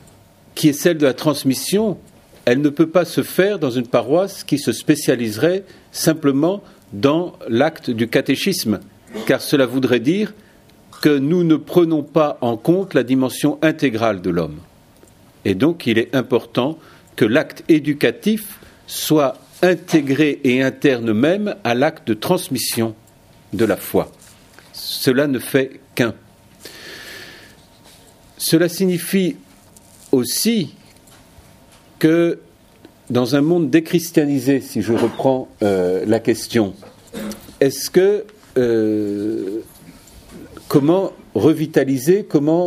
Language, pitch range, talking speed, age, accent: French, 120-170 Hz, 115 wpm, 40-59, French